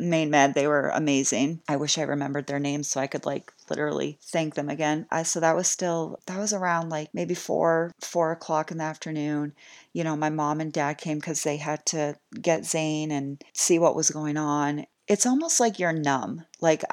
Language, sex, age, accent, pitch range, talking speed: English, female, 30-49, American, 145-165 Hz, 210 wpm